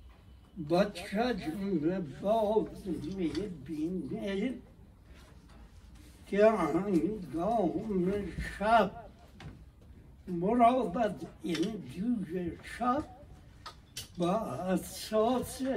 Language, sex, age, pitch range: Persian, male, 60-79, 160-225 Hz